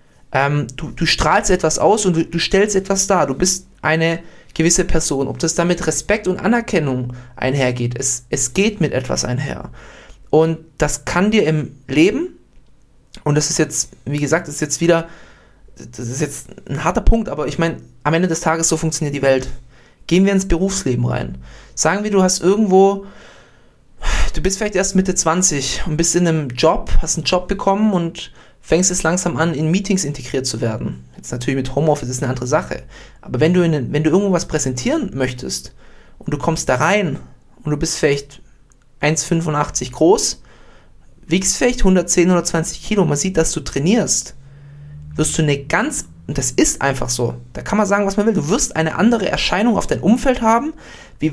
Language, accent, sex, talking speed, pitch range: German, German, male, 190 wpm, 140-190 Hz